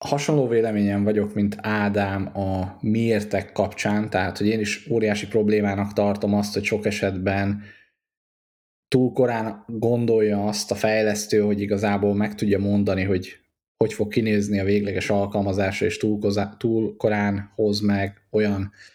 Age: 20-39